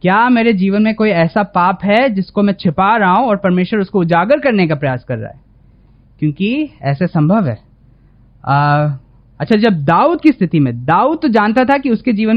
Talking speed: 200 wpm